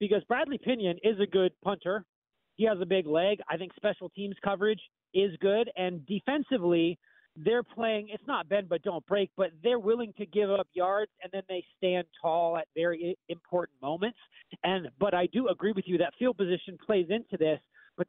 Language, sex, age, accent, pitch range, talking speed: English, male, 40-59, American, 170-205 Hz, 195 wpm